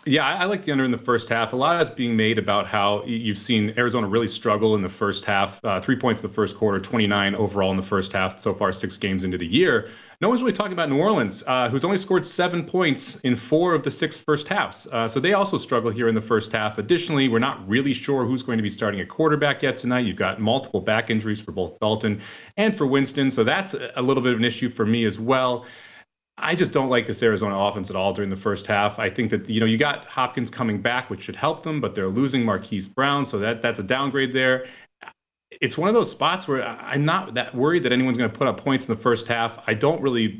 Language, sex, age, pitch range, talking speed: English, male, 30-49, 110-145 Hz, 260 wpm